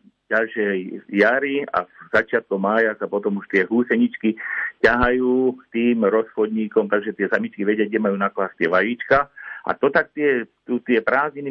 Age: 50-69